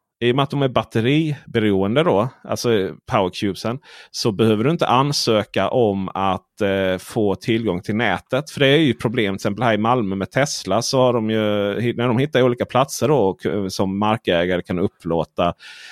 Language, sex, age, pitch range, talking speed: Swedish, male, 30-49, 105-150 Hz, 180 wpm